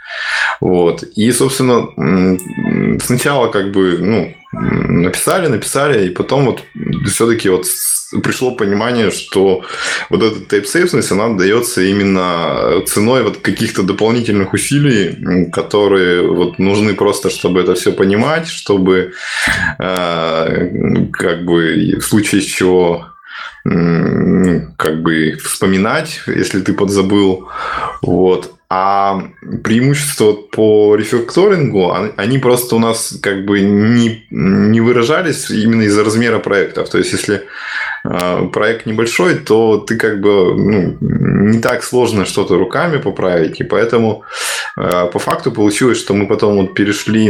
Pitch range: 95-115 Hz